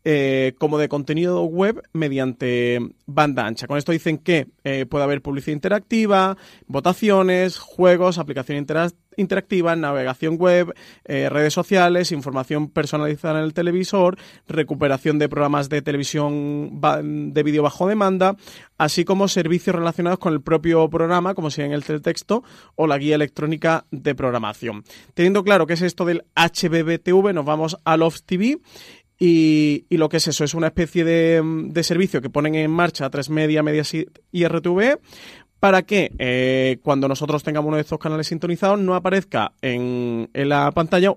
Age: 30-49